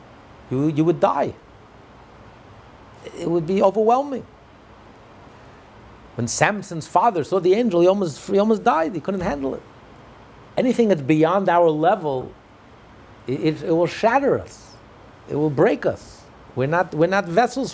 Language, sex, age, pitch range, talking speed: English, male, 60-79, 115-180 Hz, 140 wpm